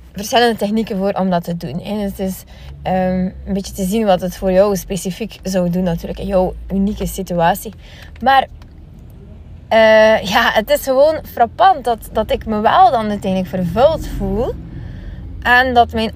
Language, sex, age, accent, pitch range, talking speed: Dutch, female, 20-39, Dutch, 180-235 Hz, 160 wpm